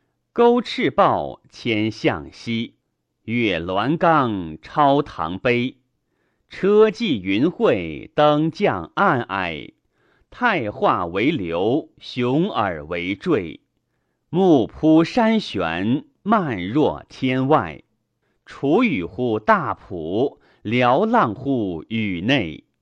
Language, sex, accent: Chinese, male, native